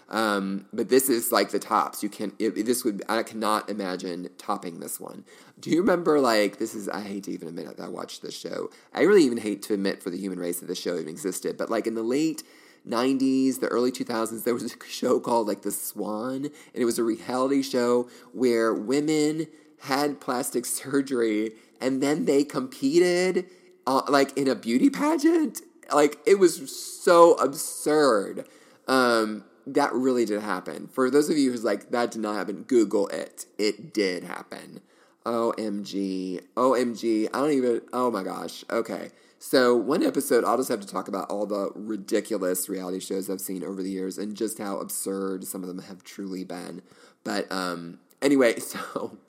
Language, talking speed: English, 190 wpm